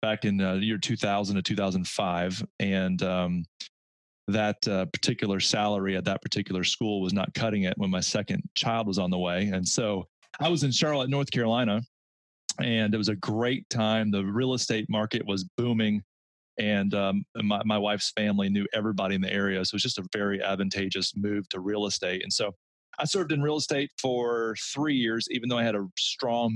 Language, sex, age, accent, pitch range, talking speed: English, male, 30-49, American, 95-120 Hz, 200 wpm